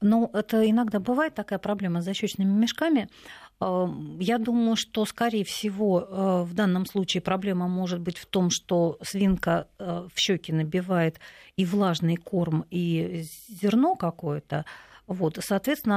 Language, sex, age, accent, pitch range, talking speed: Russian, female, 50-69, native, 175-215 Hz, 130 wpm